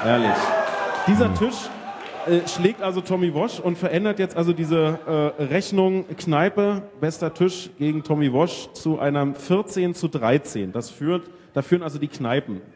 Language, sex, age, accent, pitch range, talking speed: German, male, 30-49, German, 155-200 Hz, 155 wpm